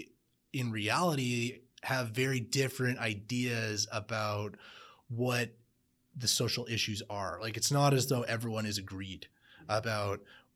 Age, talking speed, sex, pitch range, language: 30-49, 120 wpm, male, 100-125 Hz, English